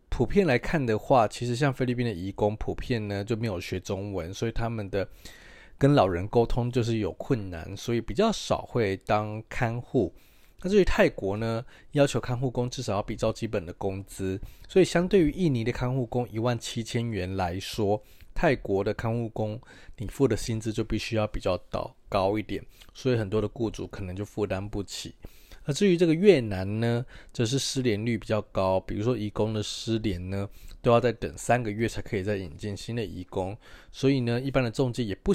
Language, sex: Chinese, male